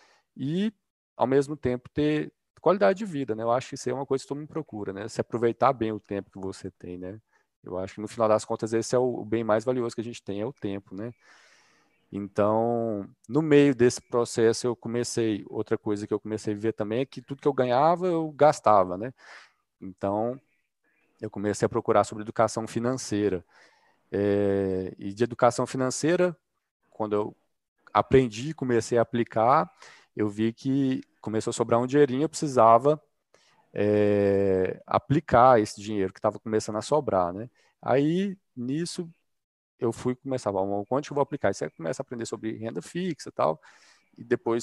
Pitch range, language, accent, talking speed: 105-135 Hz, Portuguese, Brazilian, 185 wpm